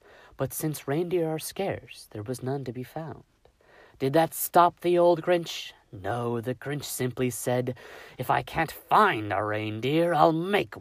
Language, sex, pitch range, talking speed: English, male, 105-155 Hz, 165 wpm